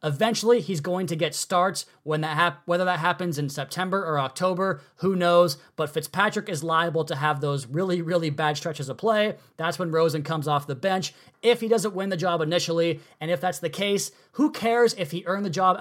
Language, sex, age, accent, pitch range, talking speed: English, male, 20-39, American, 155-195 Hz, 215 wpm